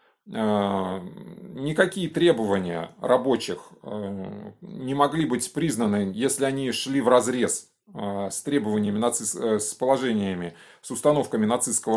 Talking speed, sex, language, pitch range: 85 wpm, male, Russian, 110-165 Hz